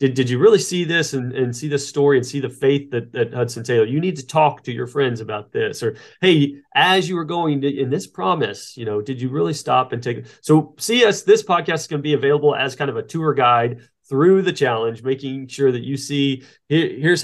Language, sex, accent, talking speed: English, male, American, 245 wpm